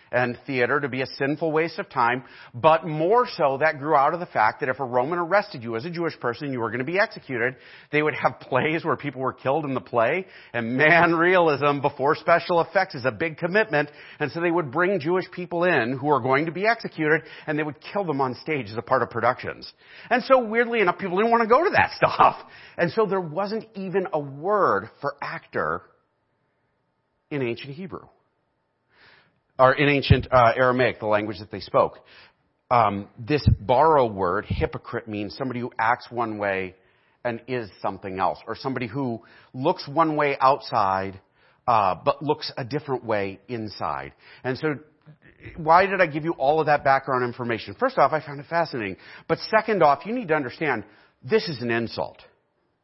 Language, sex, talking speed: English, male, 195 wpm